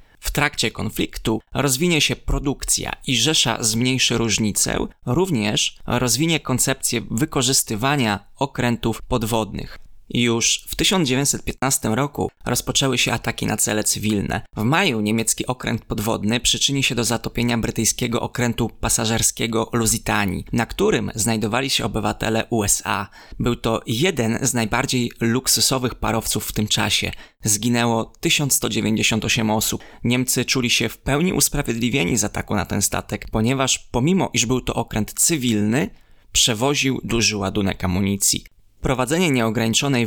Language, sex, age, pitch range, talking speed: Polish, male, 20-39, 105-125 Hz, 125 wpm